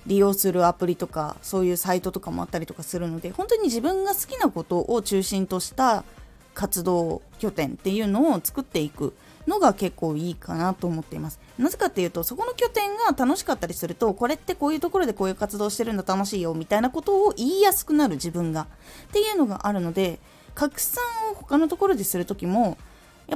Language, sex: Japanese, female